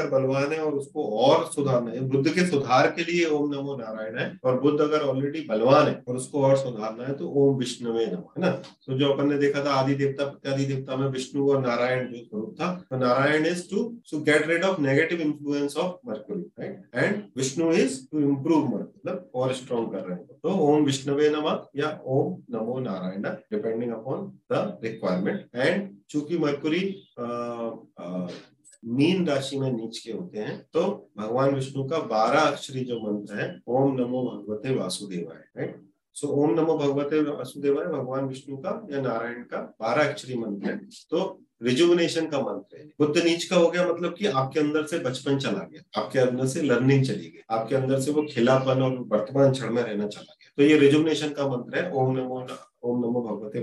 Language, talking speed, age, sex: Hindi, 140 wpm, 30-49, male